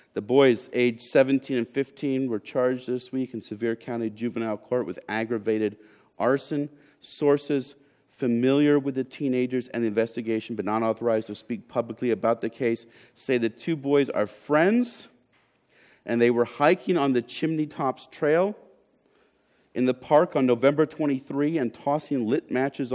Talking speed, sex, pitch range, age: 155 wpm, male, 105-135 Hz, 40-59